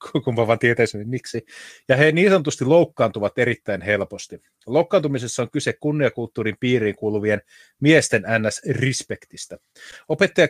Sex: male